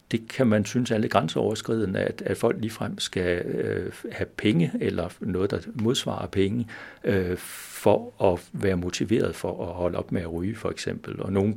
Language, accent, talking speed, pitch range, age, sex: Danish, native, 170 wpm, 90-110 Hz, 60-79, male